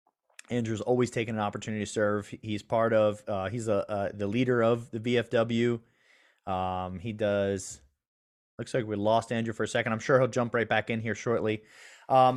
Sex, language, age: male, English, 30-49